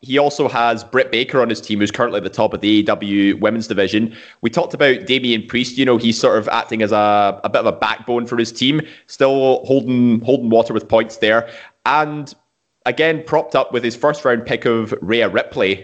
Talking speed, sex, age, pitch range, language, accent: 220 wpm, male, 20-39, 110-130 Hz, English, British